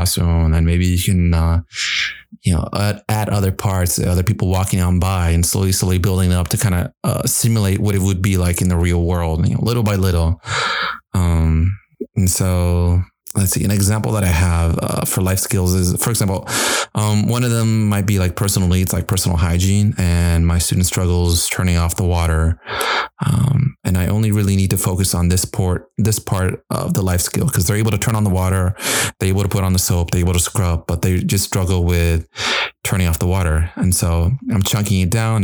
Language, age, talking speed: English, 30-49, 215 wpm